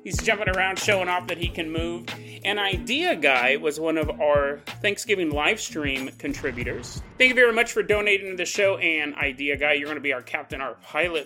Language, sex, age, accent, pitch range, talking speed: English, male, 30-49, American, 145-205 Hz, 210 wpm